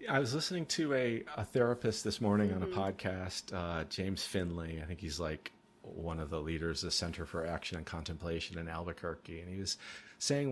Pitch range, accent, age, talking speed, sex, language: 95-115 Hz, American, 40-59, 205 wpm, male, English